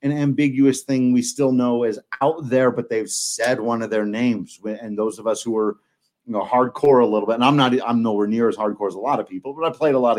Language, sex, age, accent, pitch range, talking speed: English, male, 30-49, American, 115-150 Hz, 270 wpm